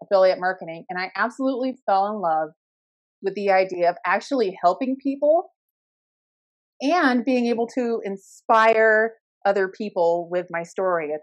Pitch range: 185-265 Hz